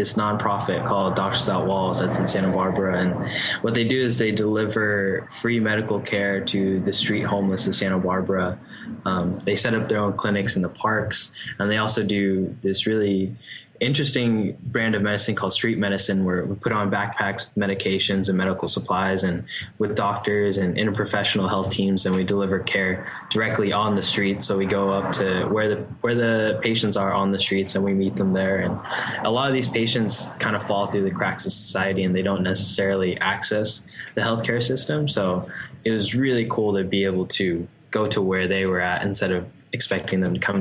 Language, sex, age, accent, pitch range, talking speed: English, male, 10-29, American, 95-110 Hz, 200 wpm